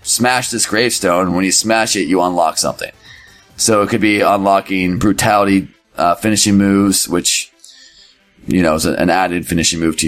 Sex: male